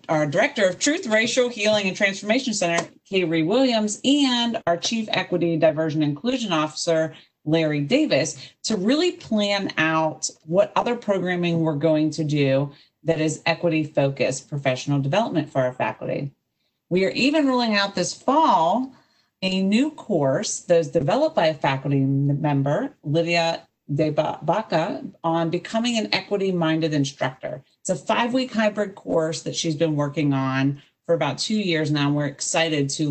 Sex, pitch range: female, 150-205 Hz